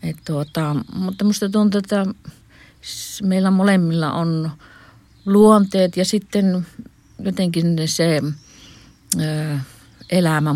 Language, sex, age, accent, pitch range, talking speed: Finnish, female, 50-69, native, 130-175 Hz, 80 wpm